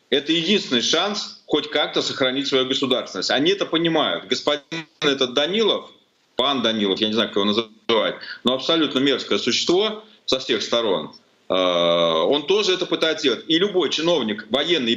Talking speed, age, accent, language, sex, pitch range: 150 wpm, 30-49, native, Russian, male, 130-170 Hz